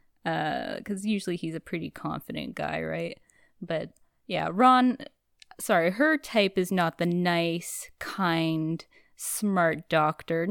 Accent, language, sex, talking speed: American, English, female, 125 wpm